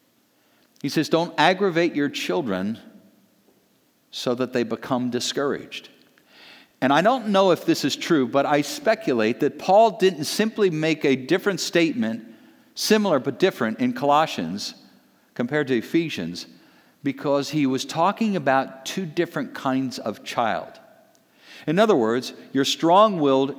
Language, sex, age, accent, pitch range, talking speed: English, male, 50-69, American, 130-190 Hz, 135 wpm